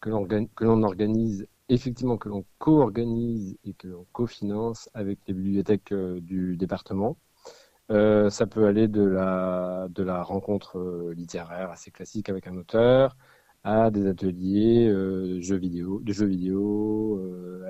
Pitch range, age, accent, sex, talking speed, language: 95-110 Hz, 40-59, French, male, 140 wpm, French